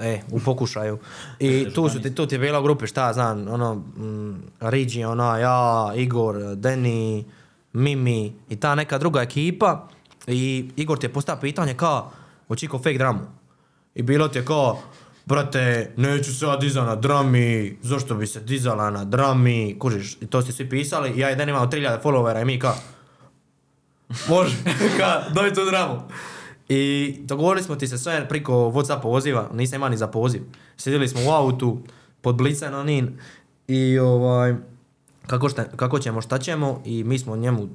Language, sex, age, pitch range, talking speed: Croatian, male, 20-39, 120-140 Hz, 170 wpm